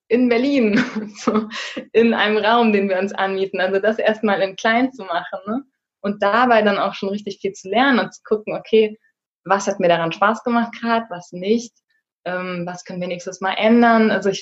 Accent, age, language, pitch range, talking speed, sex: German, 20-39, German, 175-225 Hz, 200 wpm, female